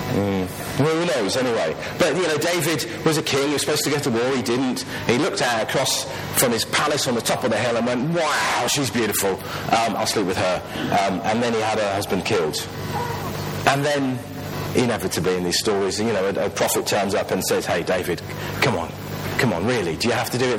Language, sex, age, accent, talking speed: English, male, 40-59, British, 235 wpm